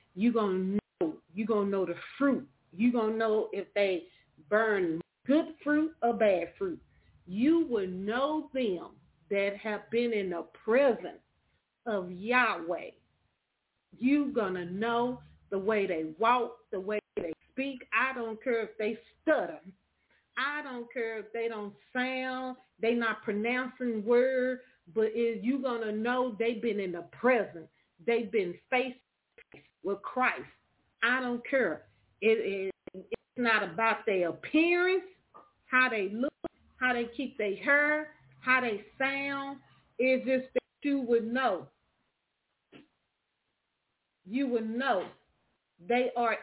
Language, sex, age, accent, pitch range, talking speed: English, female, 40-59, American, 205-255 Hz, 135 wpm